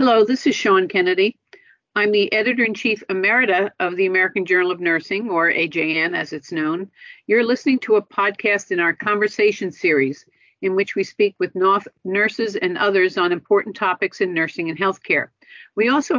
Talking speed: 170 wpm